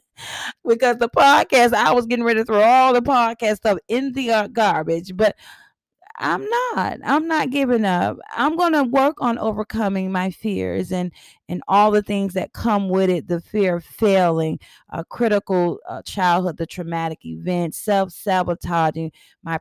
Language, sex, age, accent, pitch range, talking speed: English, female, 30-49, American, 185-245 Hz, 160 wpm